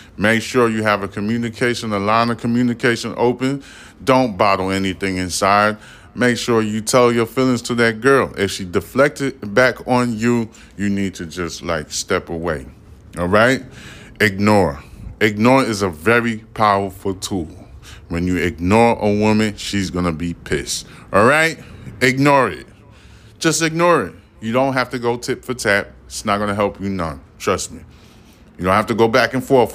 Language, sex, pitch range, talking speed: English, male, 95-125 Hz, 180 wpm